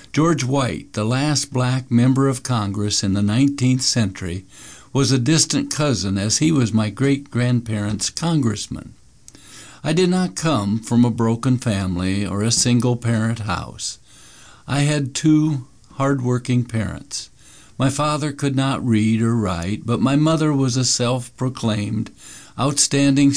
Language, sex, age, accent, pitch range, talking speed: English, male, 60-79, American, 110-140 Hz, 135 wpm